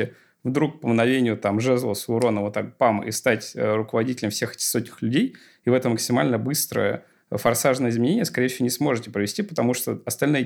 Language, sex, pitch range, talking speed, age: Russian, male, 110-130 Hz, 180 wpm, 20-39